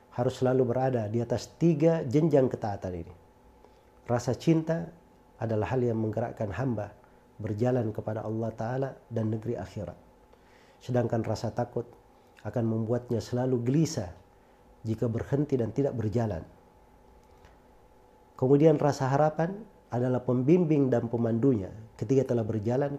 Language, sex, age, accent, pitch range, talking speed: Indonesian, male, 50-69, native, 115-135 Hz, 115 wpm